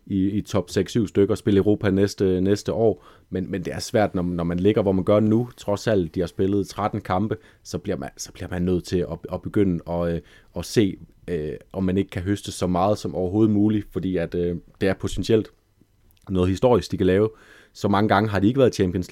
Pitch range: 90-110 Hz